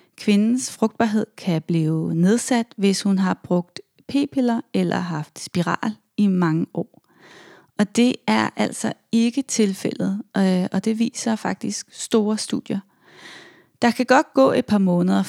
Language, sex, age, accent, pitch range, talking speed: Danish, female, 30-49, native, 180-230 Hz, 135 wpm